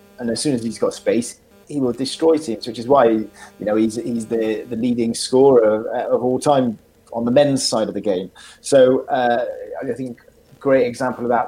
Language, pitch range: English, 110-130 Hz